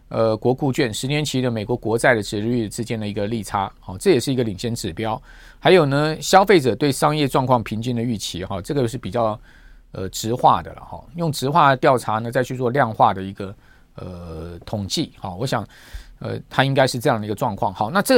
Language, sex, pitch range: Chinese, male, 110-150 Hz